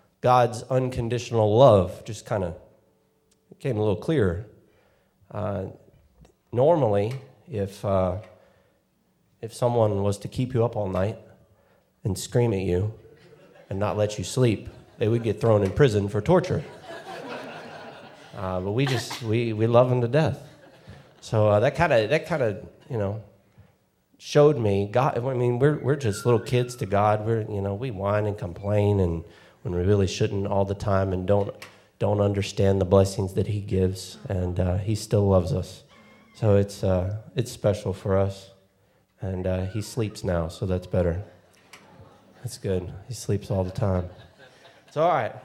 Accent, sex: American, male